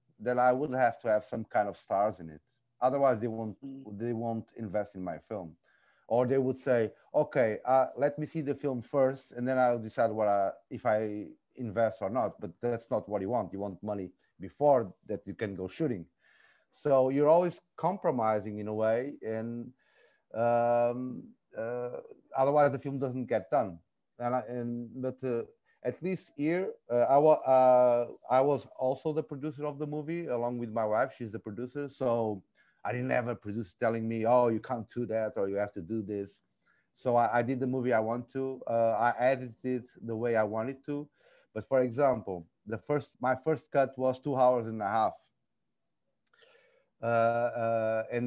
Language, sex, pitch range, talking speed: Indonesian, male, 110-135 Hz, 195 wpm